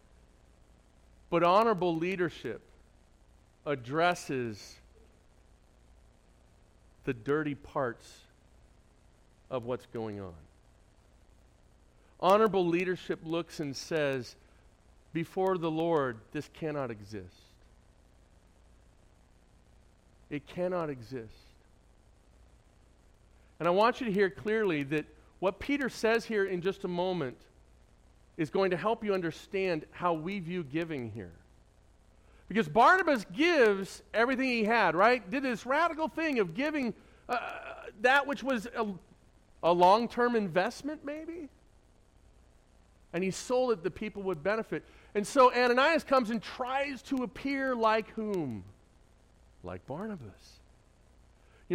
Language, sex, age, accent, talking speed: English, male, 50-69, American, 110 wpm